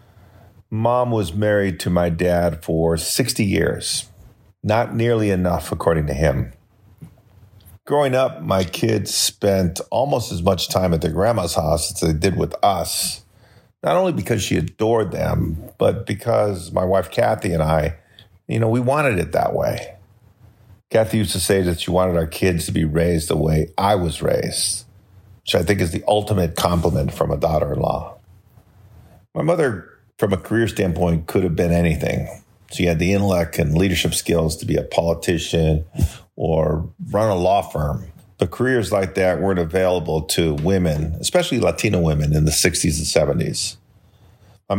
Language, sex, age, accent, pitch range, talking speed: English, male, 40-59, American, 85-105 Hz, 165 wpm